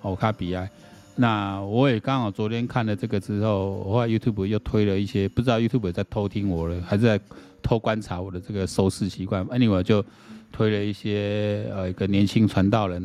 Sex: male